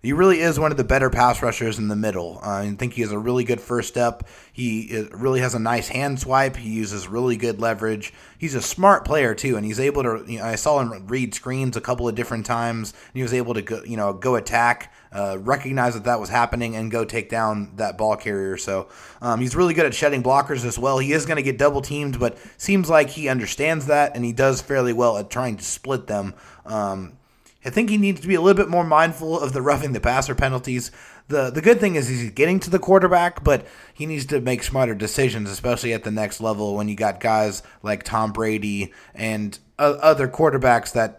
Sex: male